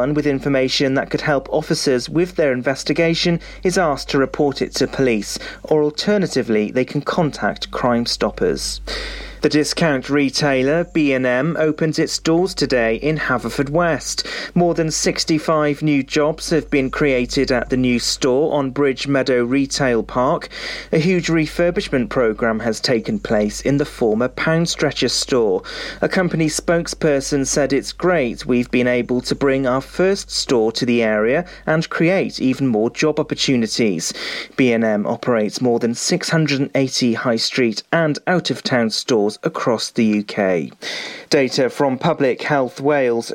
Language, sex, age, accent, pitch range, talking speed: English, male, 40-59, British, 125-160 Hz, 145 wpm